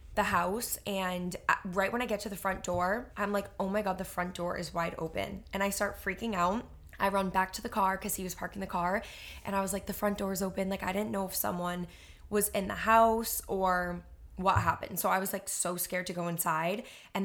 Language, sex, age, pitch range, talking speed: English, female, 20-39, 180-210 Hz, 245 wpm